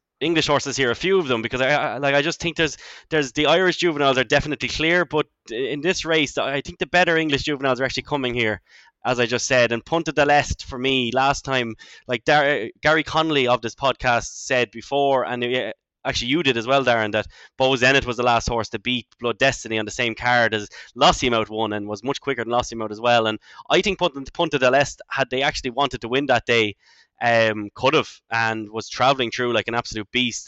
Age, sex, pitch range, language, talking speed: 10-29, male, 110-140 Hz, English, 225 wpm